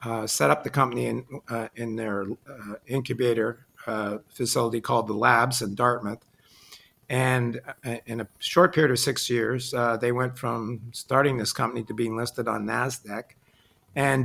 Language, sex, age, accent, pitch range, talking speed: English, male, 50-69, American, 110-130 Hz, 165 wpm